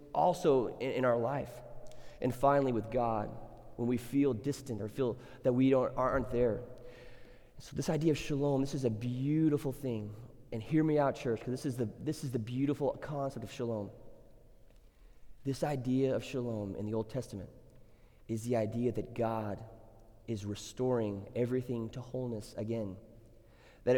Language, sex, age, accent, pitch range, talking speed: English, male, 30-49, American, 125-180 Hz, 155 wpm